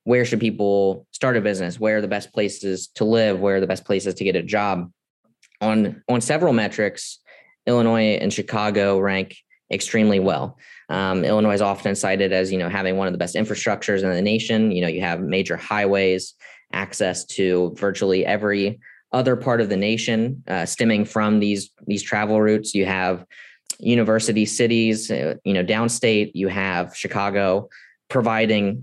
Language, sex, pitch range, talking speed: English, male, 95-110 Hz, 170 wpm